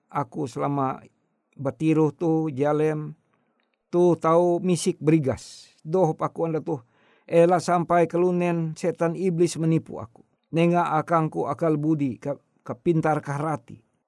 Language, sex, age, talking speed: Indonesian, male, 50-69, 120 wpm